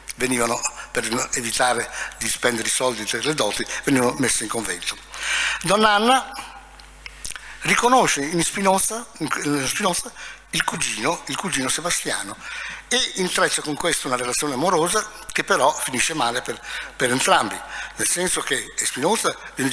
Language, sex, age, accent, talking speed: Italian, male, 60-79, native, 135 wpm